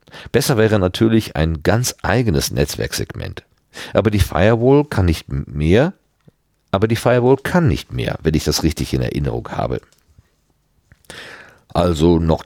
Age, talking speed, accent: 50-69, 135 wpm, German